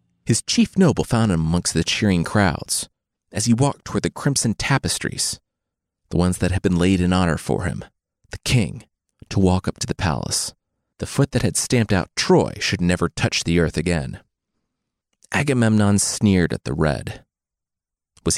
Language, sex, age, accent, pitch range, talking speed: English, male, 30-49, American, 85-120 Hz, 175 wpm